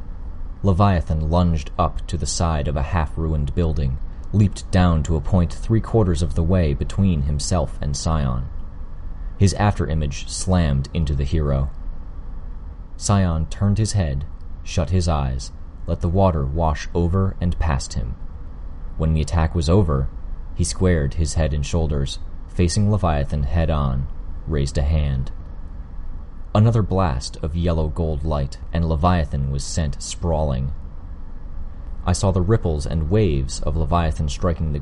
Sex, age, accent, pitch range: male, 30-49, American, 75-90 Hz